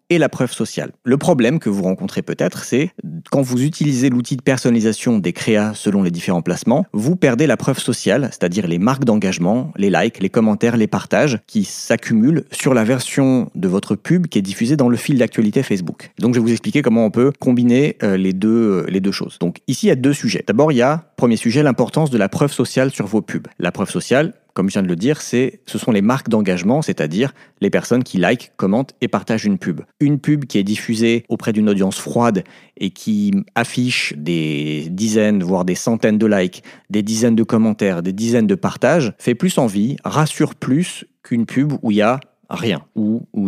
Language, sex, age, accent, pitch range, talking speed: French, male, 40-59, French, 100-135 Hz, 215 wpm